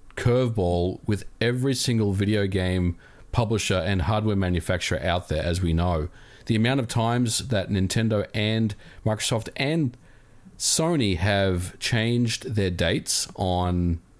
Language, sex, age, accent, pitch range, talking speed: English, male, 40-59, Australian, 95-120 Hz, 125 wpm